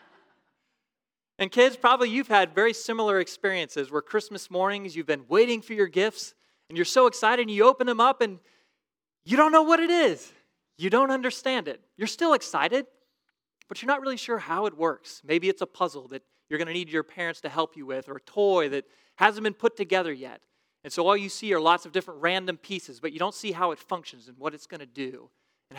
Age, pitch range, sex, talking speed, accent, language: 30-49, 155-215 Hz, male, 225 wpm, American, English